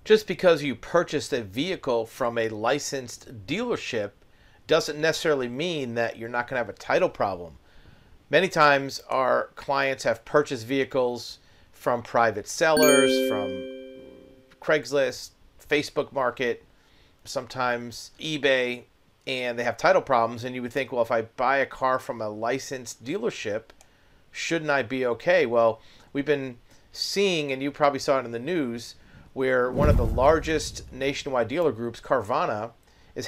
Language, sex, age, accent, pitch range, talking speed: English, male, 40-59, American, 120-145 Hz, 150 wpm